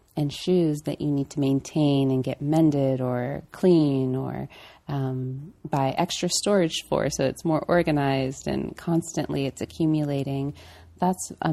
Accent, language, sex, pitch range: American, English, female, 135-155 Hz